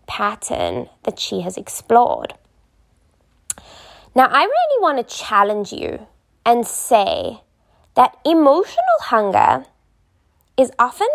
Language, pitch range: English, 200-255 Hz